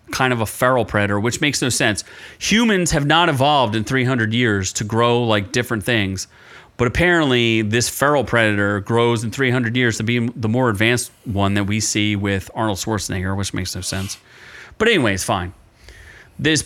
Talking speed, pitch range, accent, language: 180 wpm, 110-145 Hz, American, English